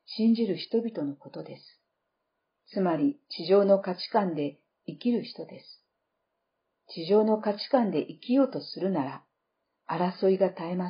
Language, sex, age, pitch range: Japanese, female, 50-69, 180-215 Hz